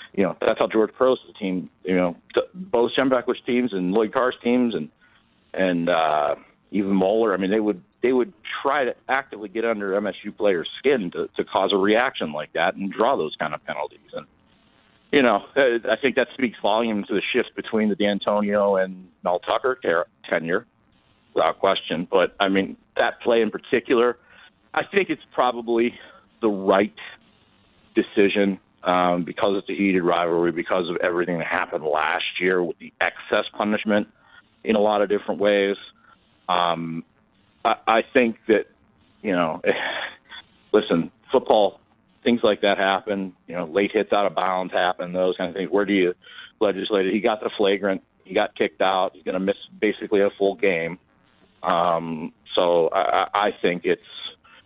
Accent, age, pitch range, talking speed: American, 50-69, 90-115 Hz, 175 wpm